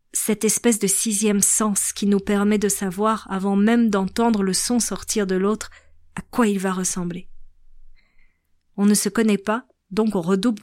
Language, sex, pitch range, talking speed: French, female, 190-225 Hz, 175 wpm